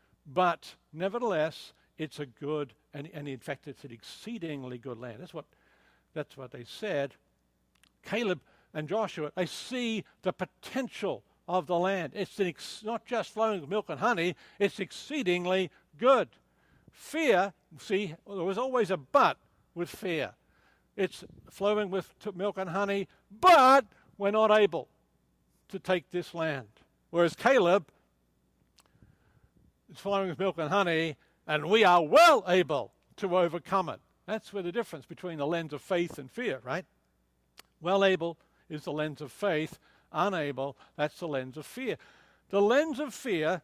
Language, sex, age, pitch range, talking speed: English, male, 60-79, 155-205 Hz, 150 wpm